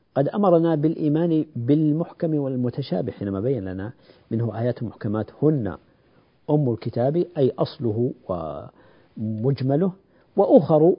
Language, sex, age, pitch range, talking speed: Arabic, male, 50-69, 120-160 Hz, 100 wpm